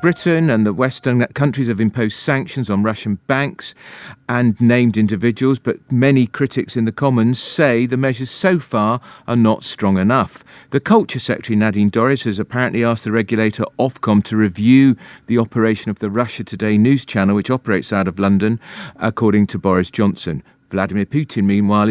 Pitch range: 105-130 Hz